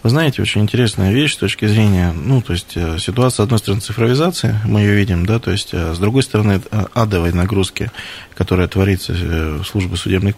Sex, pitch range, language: male, 90-115 Hz, Russian